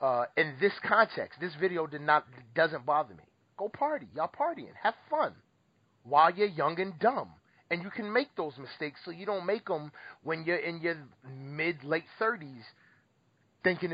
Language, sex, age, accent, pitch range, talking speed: English, male, 30-49, American, 125-180 Hz, 175 wpm